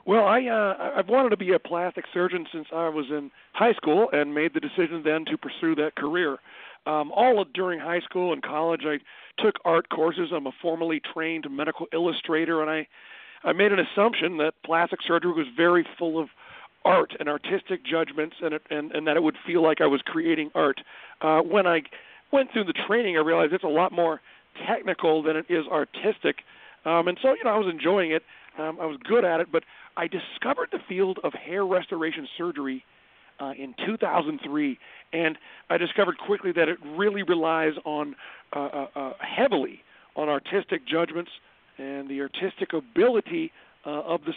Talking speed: 190 wpm